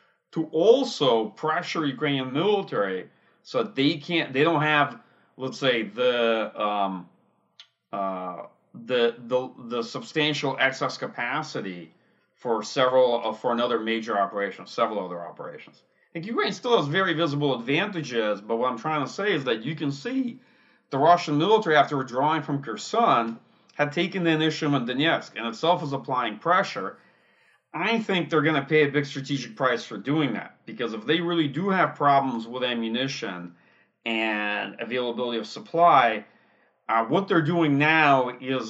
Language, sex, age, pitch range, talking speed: English, male, 40-59, 120-165 Hz, 160 wpm